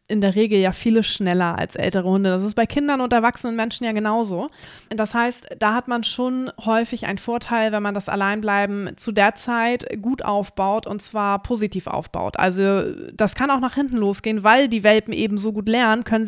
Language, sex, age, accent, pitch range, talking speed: German, female, 20-39, German, 200-235 Hz, 205 wpm